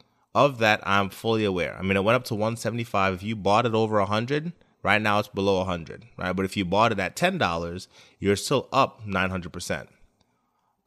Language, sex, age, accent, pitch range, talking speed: English, male, 20-39, American, 95-115 Hz, 195 wpm